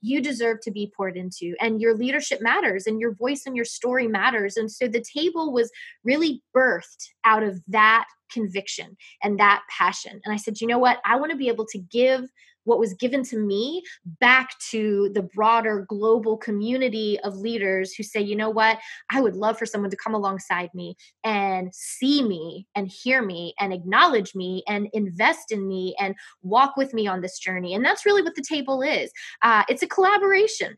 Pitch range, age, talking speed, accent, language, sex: 215-270 Hz, 20-39, 200 wpm, American, English, female